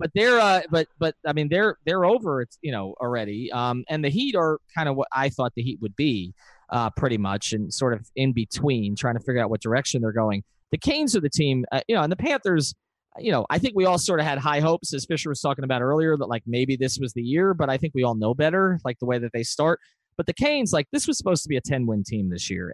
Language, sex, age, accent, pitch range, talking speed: English, male, 30-49, American, 115-155 Hz, 275 wpm